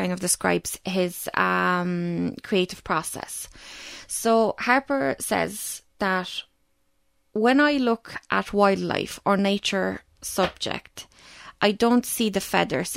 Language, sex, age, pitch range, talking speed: English, female, 20-39, 185-225 Hz, 110 wpm